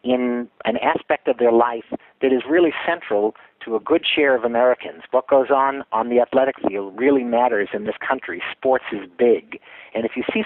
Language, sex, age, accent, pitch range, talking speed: English, male, 50-69, American, 120-145 Hz, 200 wpm